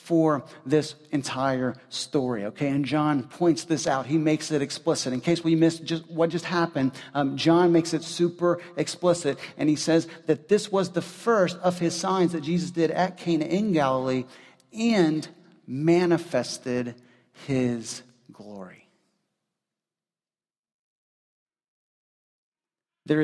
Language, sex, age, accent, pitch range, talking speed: English, male, 40-59, American, 145-180 Hz, 130 wpm